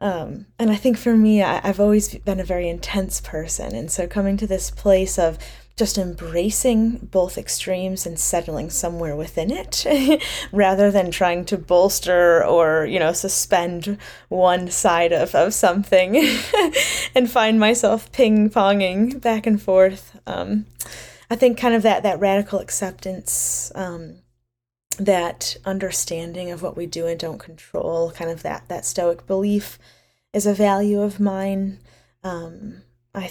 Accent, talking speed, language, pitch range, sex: American, 150 wpm, English, 170-210 Hz, female